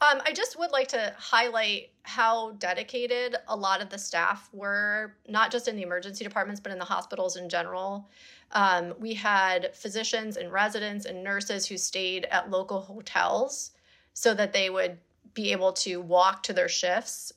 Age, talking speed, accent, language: 30-49, 175 wpm, American, English